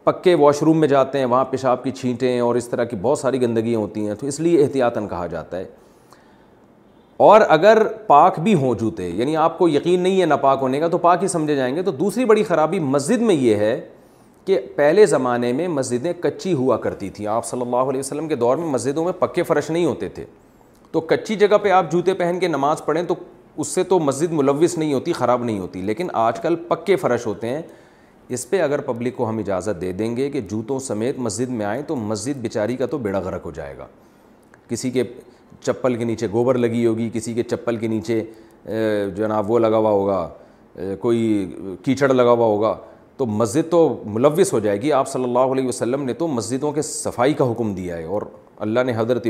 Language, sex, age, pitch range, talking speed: Urdu, male, 40-59, 115-155 Hz, 220 wpm